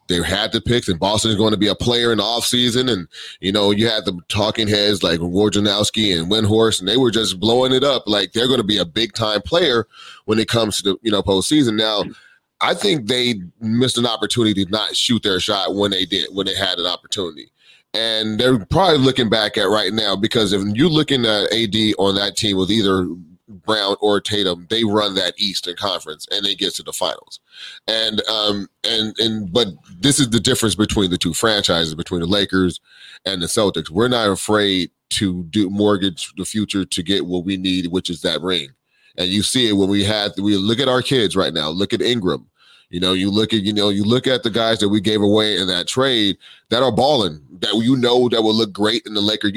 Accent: American